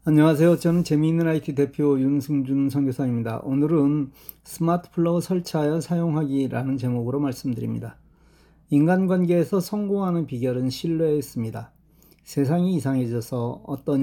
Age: 40-59